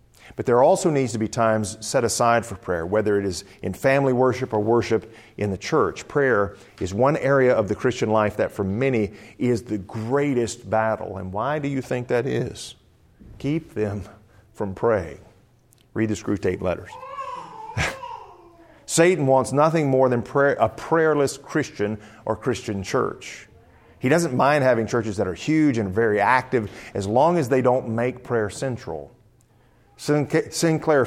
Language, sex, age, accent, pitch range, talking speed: English, male, 50-69, American, 105-140 Hz, 160 wpm